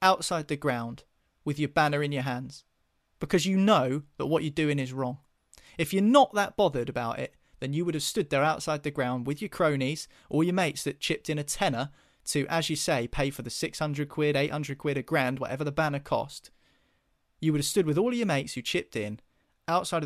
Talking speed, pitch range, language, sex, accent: 220 wpm, 130-160 Hz, English, male, British